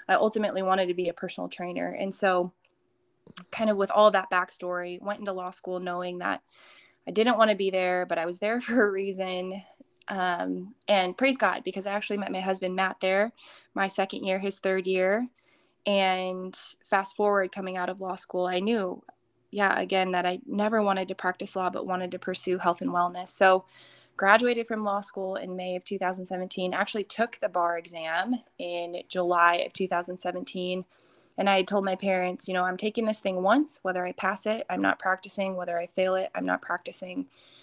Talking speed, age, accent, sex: 195 wpm, 20-39, American, female